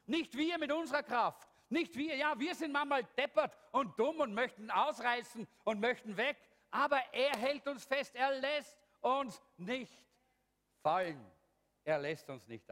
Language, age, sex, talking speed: English, 50-69, male, 160 wpm